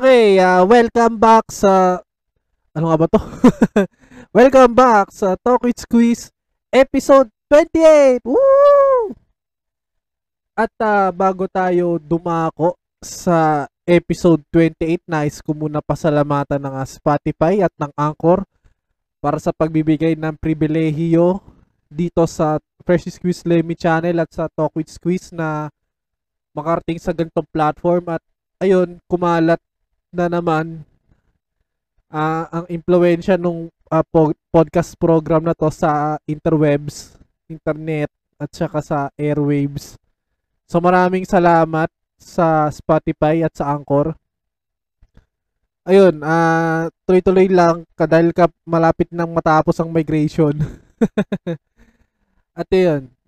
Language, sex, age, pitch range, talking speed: Filipino, male, 20-39, 155-185 Hz, 110 wpm